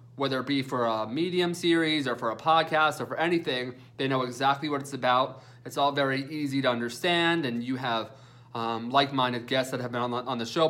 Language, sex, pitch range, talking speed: English, male, 120-145 Hz, 220 wpm